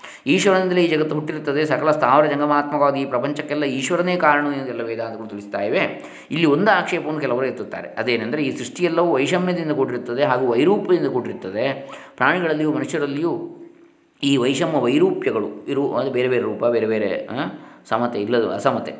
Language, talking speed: Kannada, 130 wpm